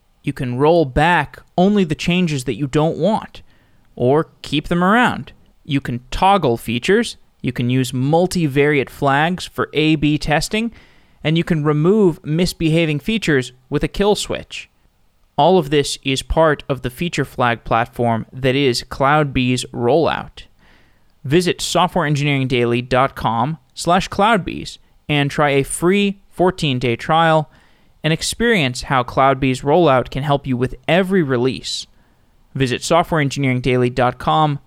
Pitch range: 130-170 Hz